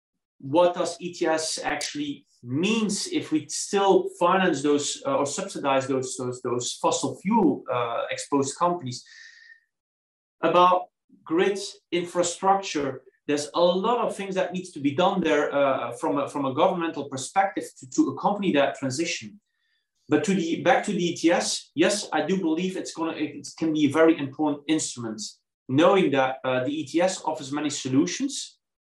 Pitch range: 135-185 Hz